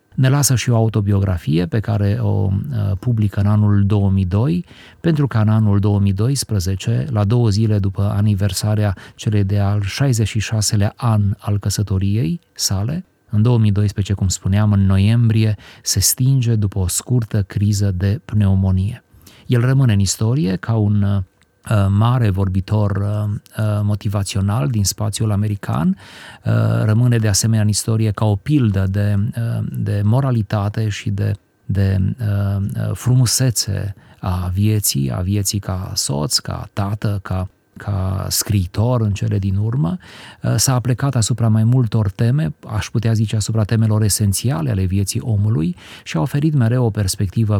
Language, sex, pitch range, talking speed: Romanian, male, 100-115 Hz, 135 wpm